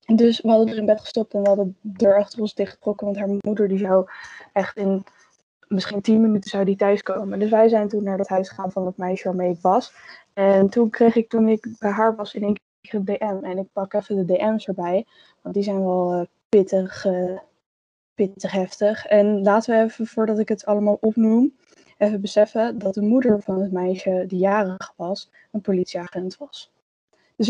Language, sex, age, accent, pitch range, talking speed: Dutch, female, 10-29, Dutch, 195-220 Hz, 215 wpm